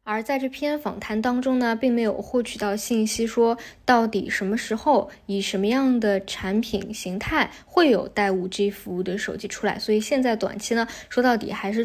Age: 20-39